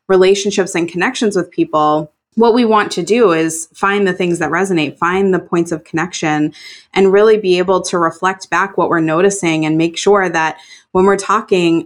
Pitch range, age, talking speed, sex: 165-195 Hz, 20-39, 190 wpm, female